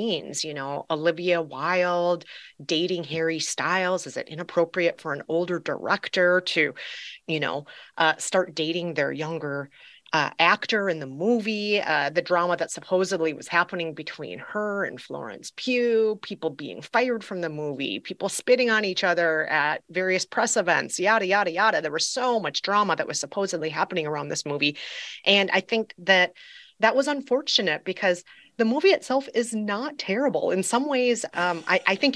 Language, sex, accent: English, female, American